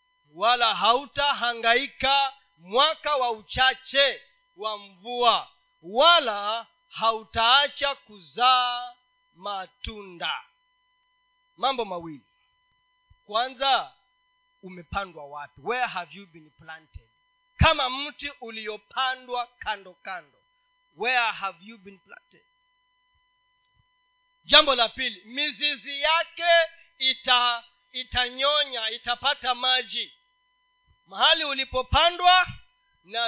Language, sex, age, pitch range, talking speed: Swahili, male, 40-59, 220-345 Hz, 80 wpm